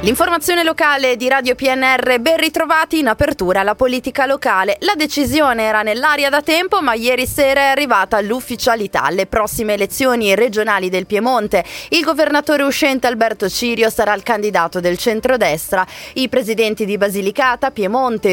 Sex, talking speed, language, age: female, 145 wpm, Italian, 20-39